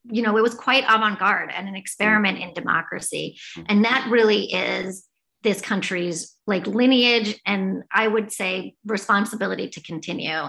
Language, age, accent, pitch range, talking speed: English, 30-49, American, 195-230 Hz, 150 wpm